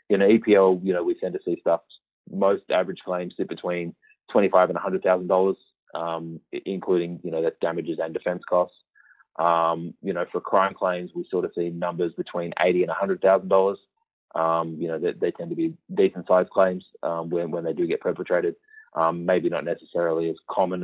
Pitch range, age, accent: 85-95 Hz, 20-39, Australian